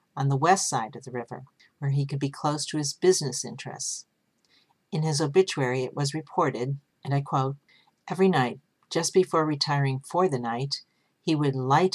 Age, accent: 50-69, American